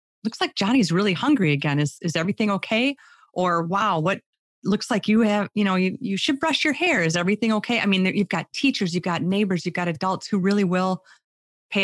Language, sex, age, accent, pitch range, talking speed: English, female, 30-49, American, 165-210 Hz, 220 wpm